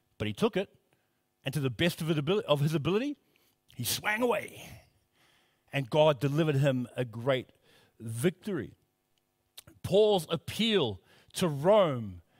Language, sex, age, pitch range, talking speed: English, male, 50-69, 125-180 Hz, 120 wpm